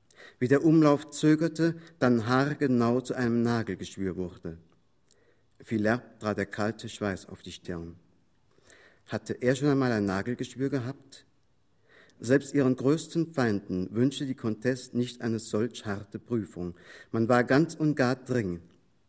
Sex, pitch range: male, 105-135 Hz